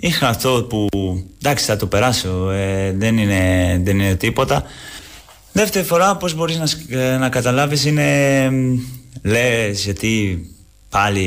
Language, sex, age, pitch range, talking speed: Greek, male, 20-39, 90-110 Hz, 130 wpm